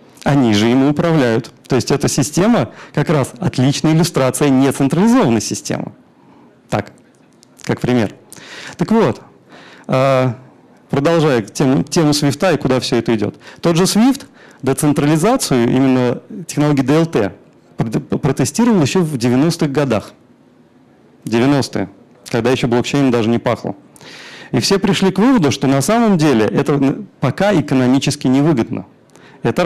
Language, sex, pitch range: Russian, male, 120-165 Hz